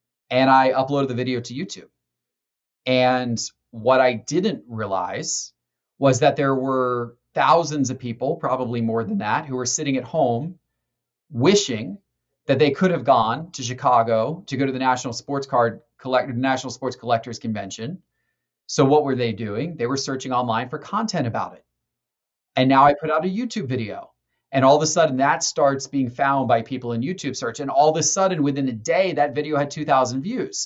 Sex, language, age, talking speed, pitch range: male, English, 30-49, 190 wpm, 125-155 Hz